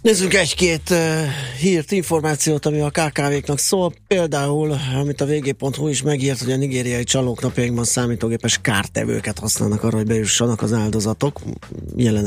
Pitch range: 110-130 Hz